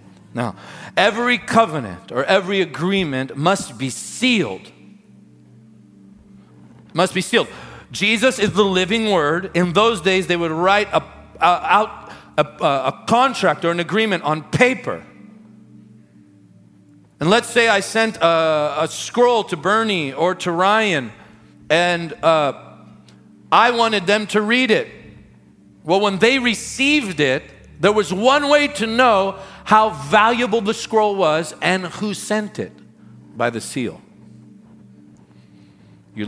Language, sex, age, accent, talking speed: English, male, 40-59, American, 125 wpm